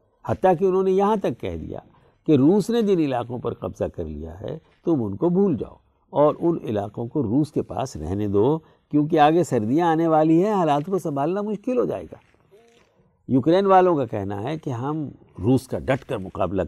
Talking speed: 205 wpm